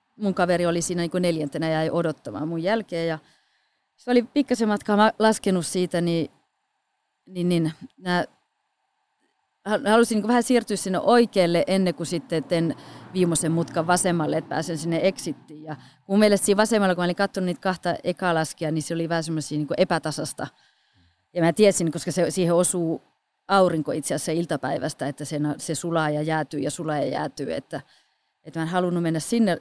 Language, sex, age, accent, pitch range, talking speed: Finnish, female, 30-49, native, 160-205 Hz, 170 wpm